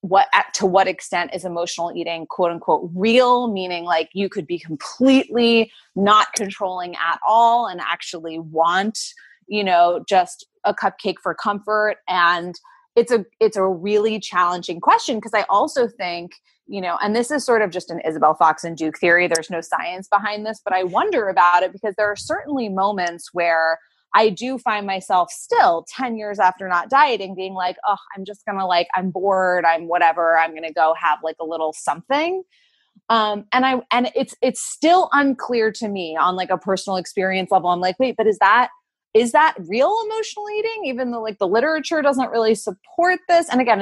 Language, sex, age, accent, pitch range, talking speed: German, female, 20-39, American, 175-245 Hz, 190 wpm